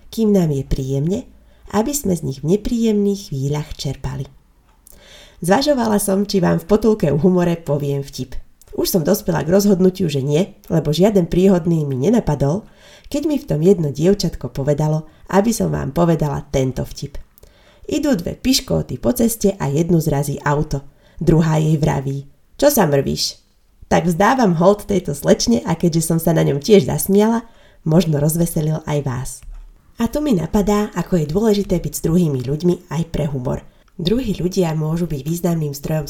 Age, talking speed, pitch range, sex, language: 30-49, 165 wpm, 145-195 Hz, female, Slovak